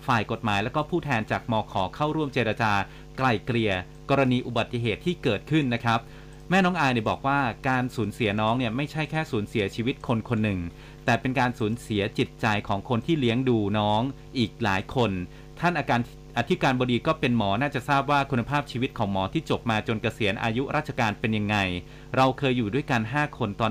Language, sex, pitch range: Thai, male, 110-140 Hz